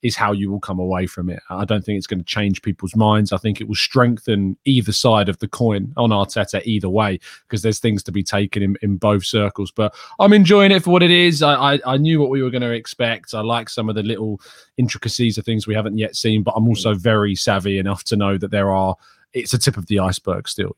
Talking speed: 260 wpm